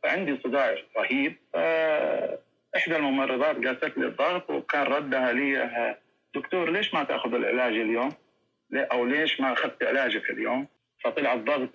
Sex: male